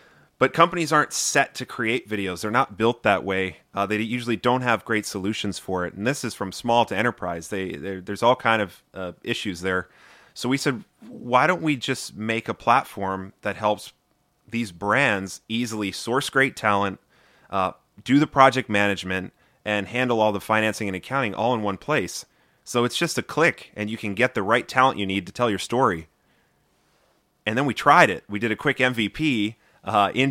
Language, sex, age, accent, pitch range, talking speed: English, male, 30-49, American, 100-125 Hz, 195 wpm